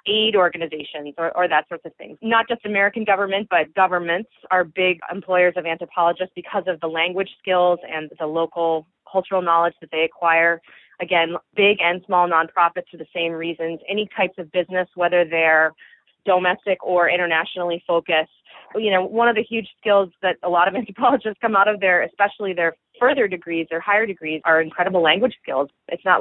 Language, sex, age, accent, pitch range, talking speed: English, female, 30-49, American, 165-195 Hz, 185 wpm